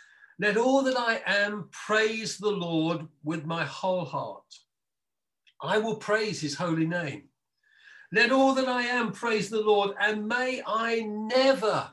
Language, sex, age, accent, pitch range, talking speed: English, male, 50-69, British, 145-225 Hz, 150 wpm